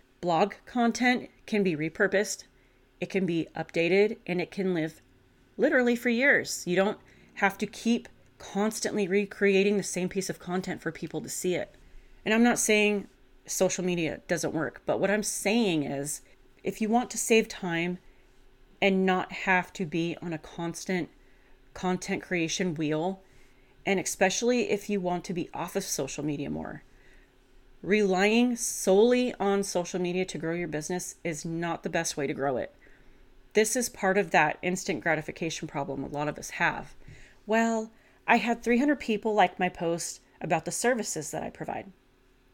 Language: English